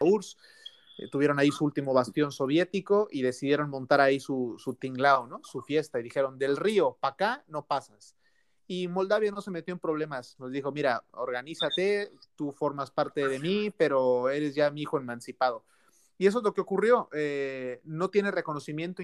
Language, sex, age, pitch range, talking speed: Spanish, male, 30-49, 130-165 Hz, 185 wpm